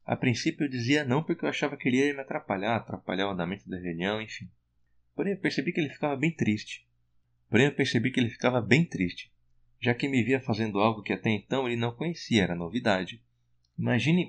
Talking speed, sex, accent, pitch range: 210 wpm, male, Brazilian, 90-120 Hz